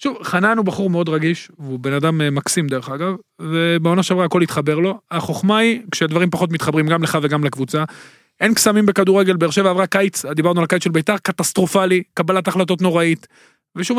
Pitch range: 165-205 Hz